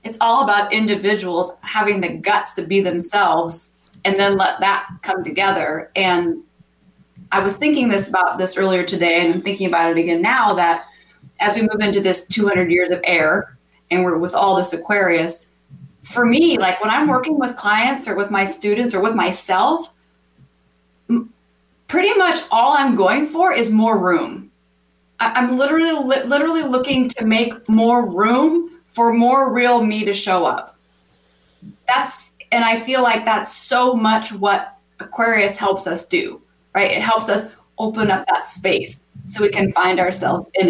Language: English